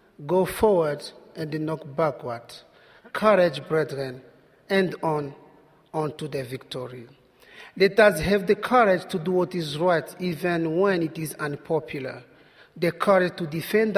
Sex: male